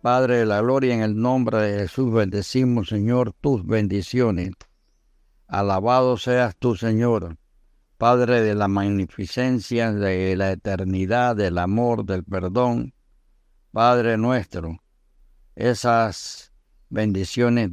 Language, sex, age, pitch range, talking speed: Spanish, male, 60-79, 95-120 Hz, 110 wpm